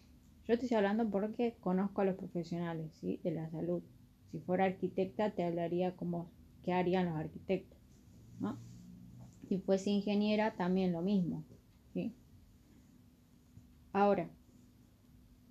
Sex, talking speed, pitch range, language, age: female, 125 wpm, 165-210 Hz, Spanish, 20-39